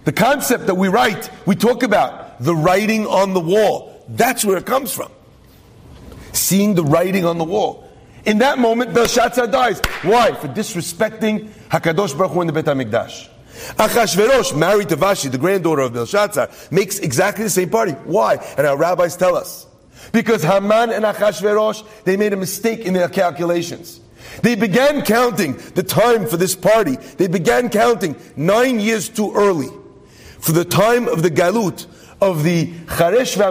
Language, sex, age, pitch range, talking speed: English, male, 40-59, 160-225 Hz, 165 wpm